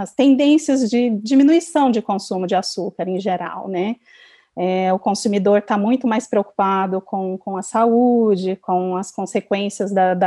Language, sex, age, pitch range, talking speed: Portuguese, female, 30-49, 195-240 Hz, 160 wpm